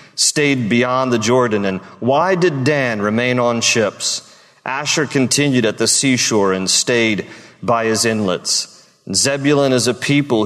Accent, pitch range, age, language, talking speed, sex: American, 120-145 Hz, 40-59, English, 145 wpm, male